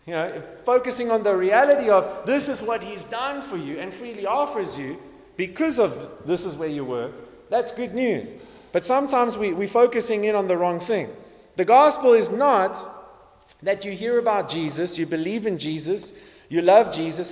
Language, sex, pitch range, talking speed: English, male, 175-240 Hz, 185 wpm